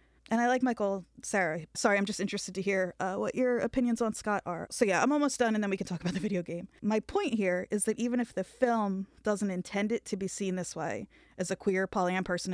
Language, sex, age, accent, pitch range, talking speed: English, female, 20-39, American, 185-215 Hz, 260 wpm